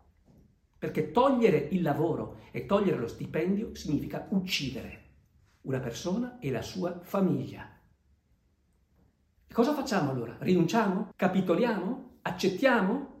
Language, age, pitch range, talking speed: Italian, 50-69, 135-200 Hz, 105 wpm